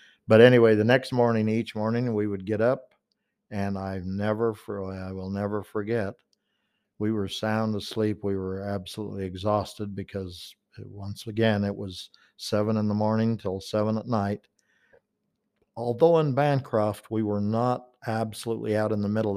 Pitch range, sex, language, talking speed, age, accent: 100-115 Hz, male, English, 155 wpm, 50-69, American